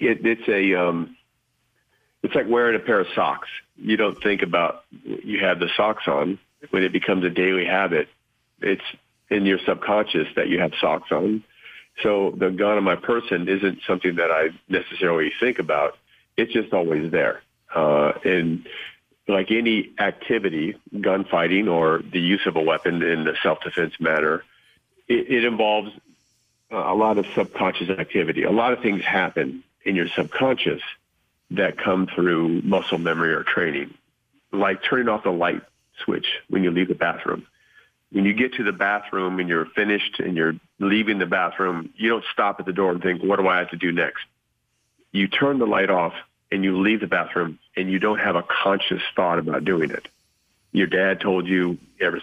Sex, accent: male, American